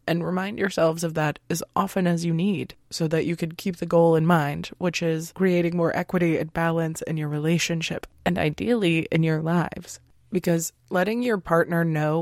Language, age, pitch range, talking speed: English, 20-39, 155-180 Hz, 190 wpm